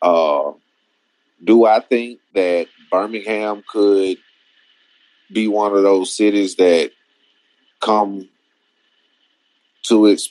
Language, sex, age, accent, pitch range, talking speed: English, male, 30-49, American, 95-115 Hz, 95 wpm